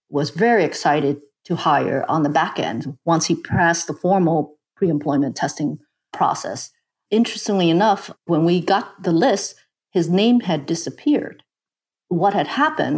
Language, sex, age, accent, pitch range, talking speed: English, female, 50-69, American, 160-195 Hz, 145 wpm